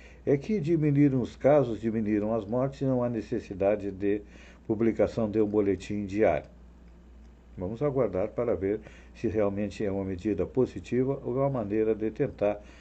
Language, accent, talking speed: Portuguese, Brazilian, 160 wpm